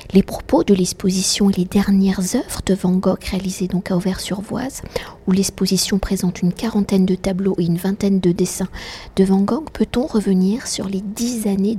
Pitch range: 190-220 Hz